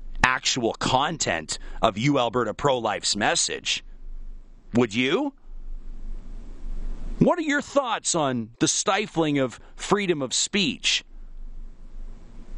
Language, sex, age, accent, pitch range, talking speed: English, male, 40-59, American, 130-170 Hz, 90 wpm